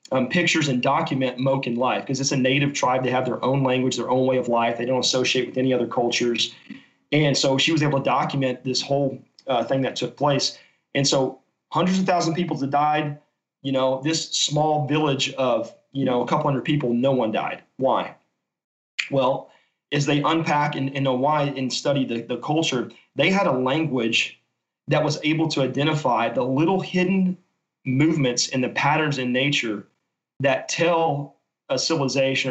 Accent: American